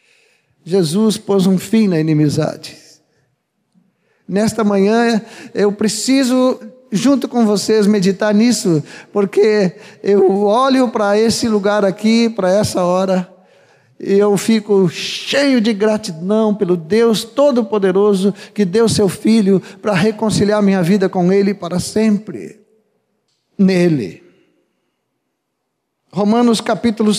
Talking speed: 110 wpm